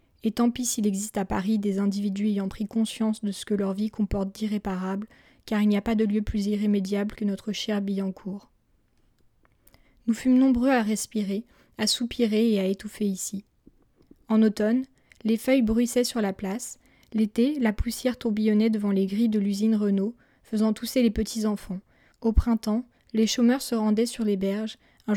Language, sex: French, female